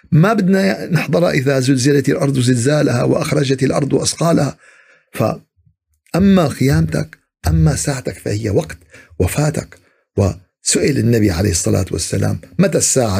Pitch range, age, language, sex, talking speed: 110-170 Hz, 50-69, Arabic, male, 115 wpm